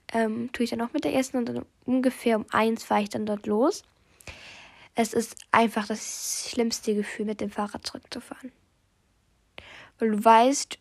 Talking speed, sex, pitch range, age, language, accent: 170 wpm, female, 210-245 Hz, 10-29, German, German